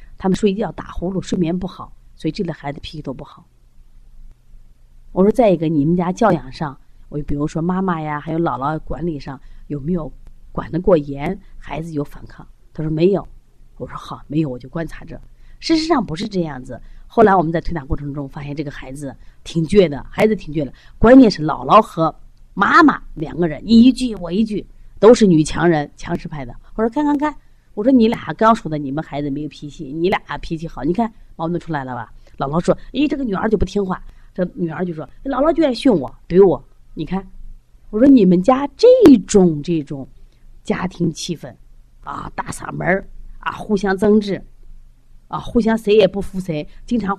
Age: 30-49